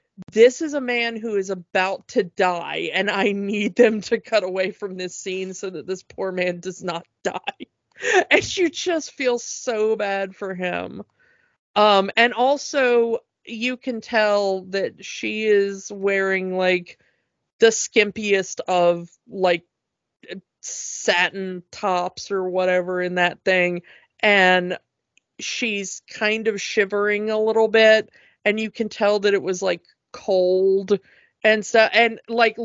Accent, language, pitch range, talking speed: American, English, 190-220 Hz, 145 wpm